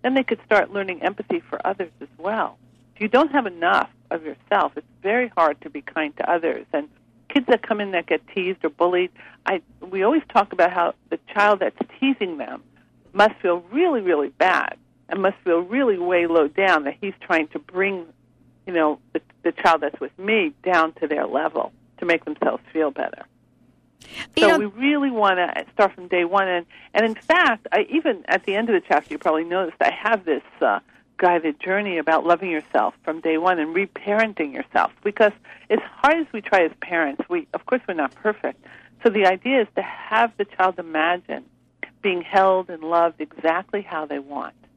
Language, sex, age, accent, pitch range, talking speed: English, female, 50-69, American, 165-220 Hz, 200 wpm